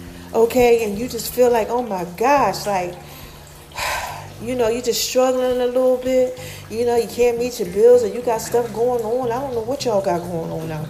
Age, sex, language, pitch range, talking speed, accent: 40-59, female, English, 190-255 Hz, 220 wpm, American